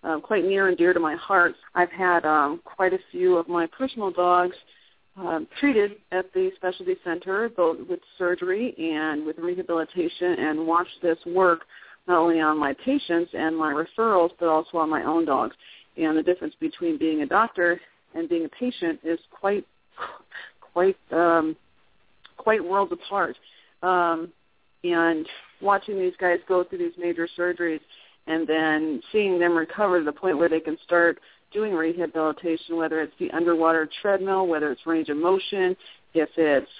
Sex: female